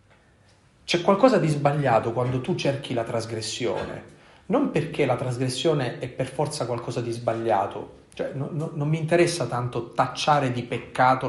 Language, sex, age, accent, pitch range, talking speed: Italian, male, 40-59, native, 120-160 Hz, 155 wpm